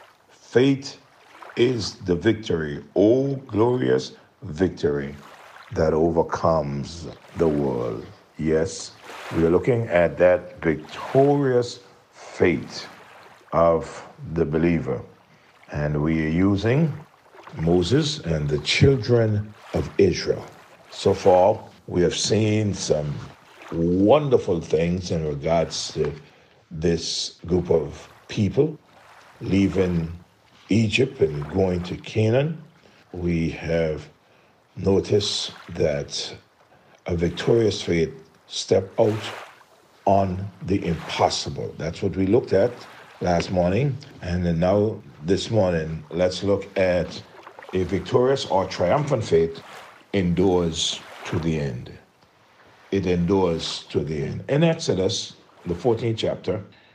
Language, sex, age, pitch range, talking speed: English, male, 60-79, 85-110 Hz, 105 wpm